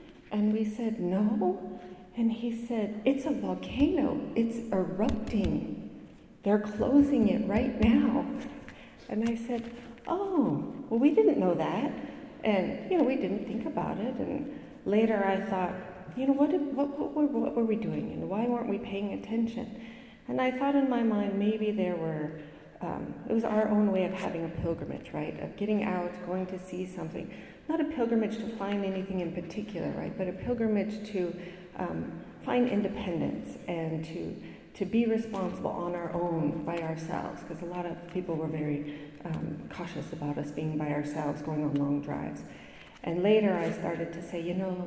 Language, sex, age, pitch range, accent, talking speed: English, female, 40-59, 175-240 Hz, American, 180 wpm